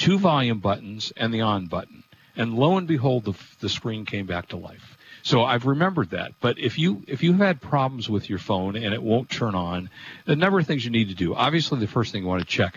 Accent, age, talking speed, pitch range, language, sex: American, 50-69, 260 wpm, 100-140 Hz, English, male